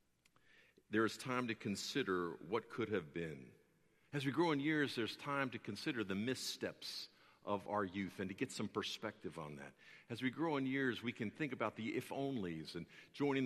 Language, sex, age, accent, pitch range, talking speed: English, male, 50-69, American, 95-140 Hz, 190 wpm